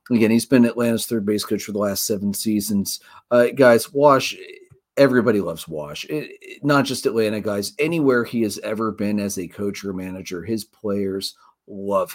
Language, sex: English, male